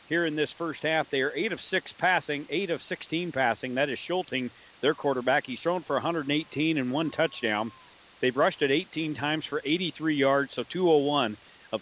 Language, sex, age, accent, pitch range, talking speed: English, male, 50-69, American, 125-155 Hz, 175 wpm